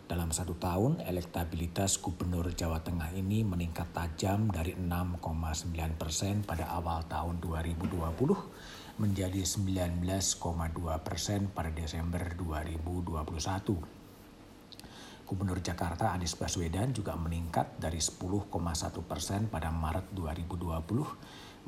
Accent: native